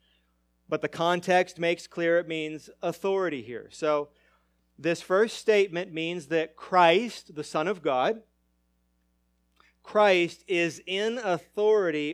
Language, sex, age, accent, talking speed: English, male, 40-59, American, 120 wpm